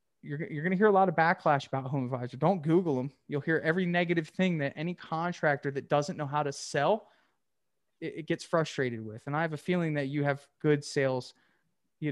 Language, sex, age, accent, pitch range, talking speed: English, male, 20-39, American, 140-170 Hz, 220 wpm